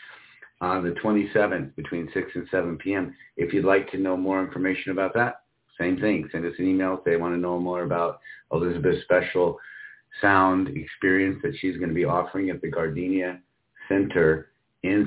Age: 50-69